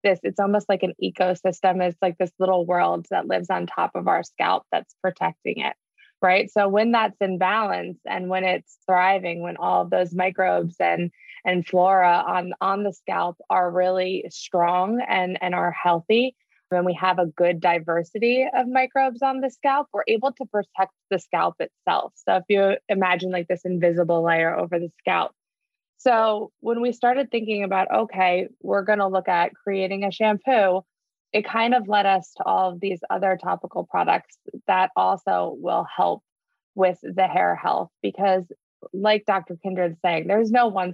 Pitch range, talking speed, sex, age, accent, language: 180-210 Hz, 175 wpm, female, 20-39, American, English